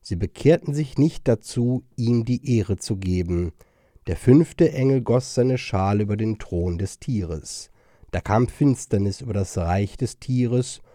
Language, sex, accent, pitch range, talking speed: German, male, German, 100-130 Hz, 160 wpm